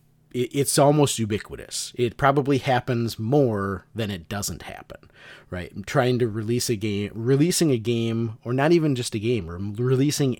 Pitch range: 90-125 Hz